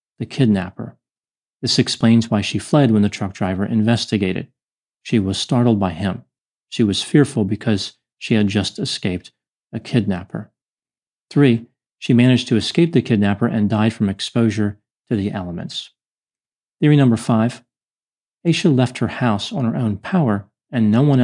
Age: 40-59